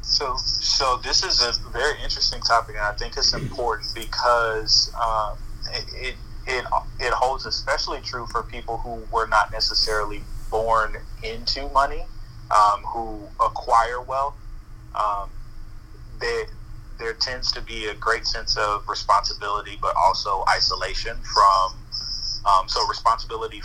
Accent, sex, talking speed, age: American, male, 130 wpm, 30-49